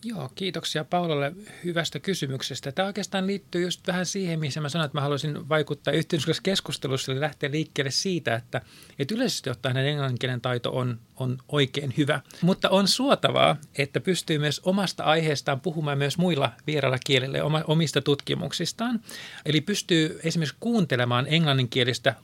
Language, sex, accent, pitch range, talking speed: Finnish, male, native, 140-175 Hz, 150 wpm